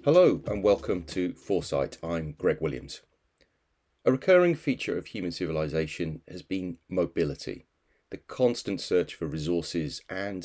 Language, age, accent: English, 30-49, British